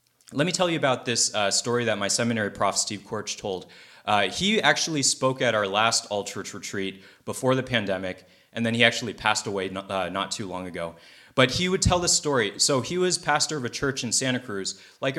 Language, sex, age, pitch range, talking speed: English, male, 30-49, 115-150 Hz, 220 wpm